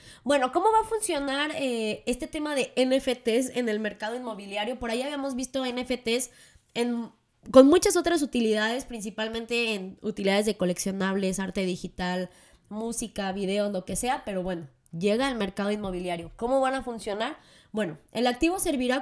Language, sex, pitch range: Spanish, female, 200-255 Hz